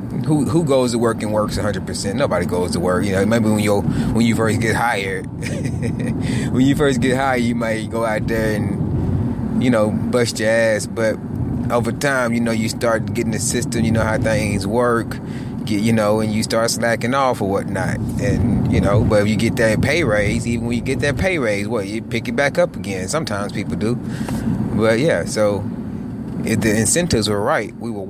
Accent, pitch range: American, 105-120 Hz